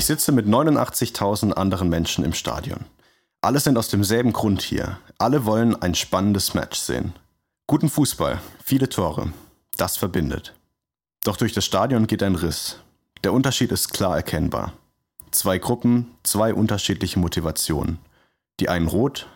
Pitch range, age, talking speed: 90-115 Hz, 30-49, 145 wpm